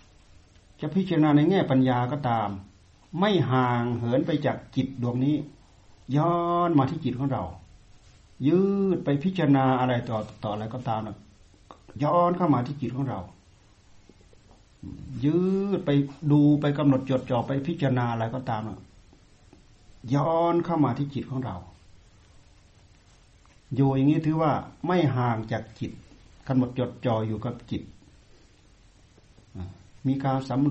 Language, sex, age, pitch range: Thai, male, 60-79, 105-150 Hz